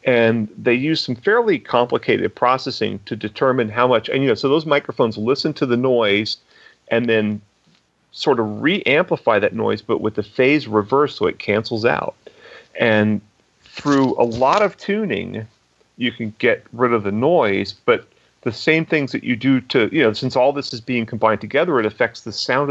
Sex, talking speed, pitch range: male, 190 wpm, 105-130 Hz